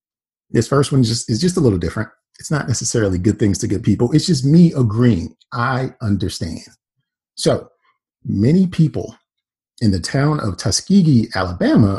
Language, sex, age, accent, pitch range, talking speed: English, male, 40-59, American, 100-130 Hz, 160 wpm